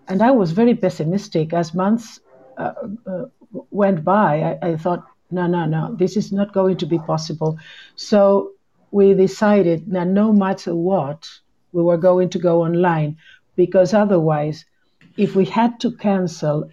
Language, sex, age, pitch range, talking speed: English, female, 60-79, 165-195 Hz, 160 wpm